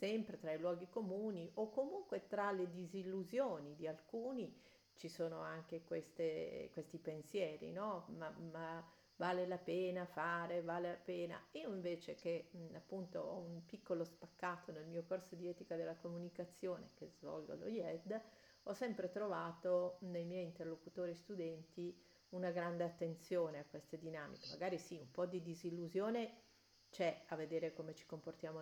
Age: 50-69